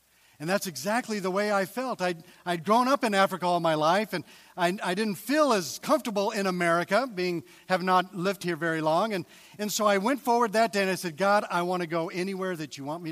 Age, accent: 50-69, American